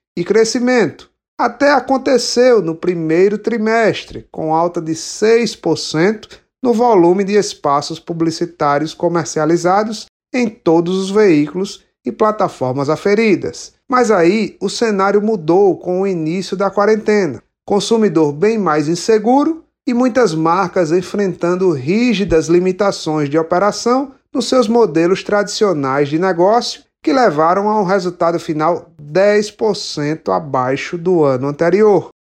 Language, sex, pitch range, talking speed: Portuguese, male, 160-215 Hz, 115 wpm